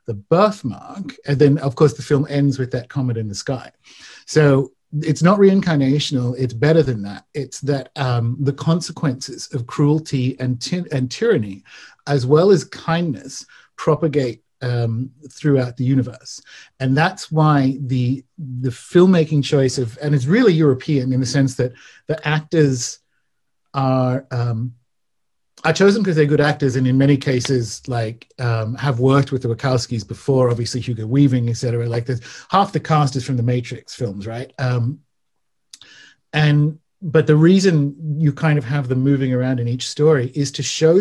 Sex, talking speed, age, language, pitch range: male, 170 wpm, 50-69, English, 125-155 Hz